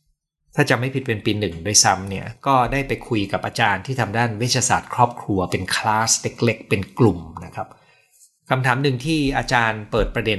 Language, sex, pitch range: Thai, male, 105-135 Hz